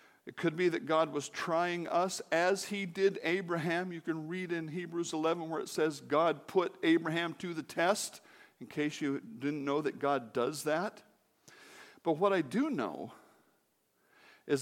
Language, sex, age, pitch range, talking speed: English, male, 60-79, 120-180 Hz, 170 wpm